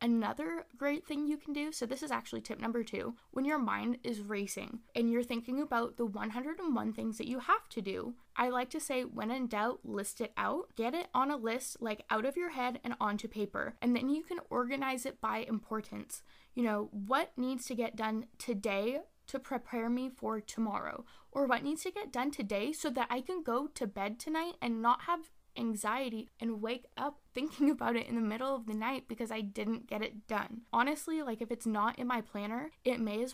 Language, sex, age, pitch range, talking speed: English, female, 10-29, 225-280 Hz, 220 wpm